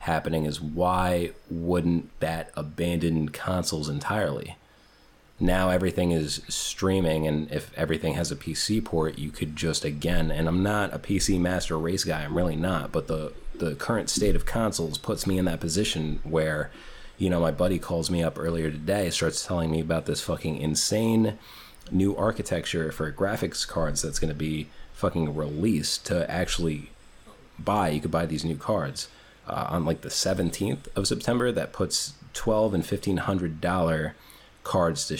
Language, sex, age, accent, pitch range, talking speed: English, male, 30-49, American, 80-95 Hz, 165 wpm